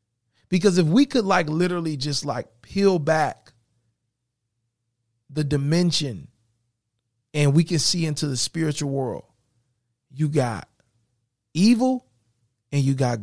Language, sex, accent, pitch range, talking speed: English, male, American, 120-150 Hz, 120 wpm